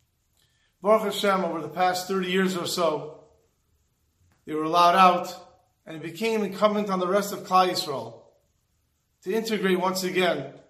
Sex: male